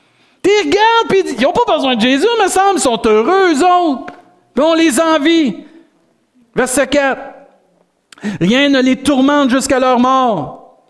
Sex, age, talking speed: male, 50-69, 170 wpm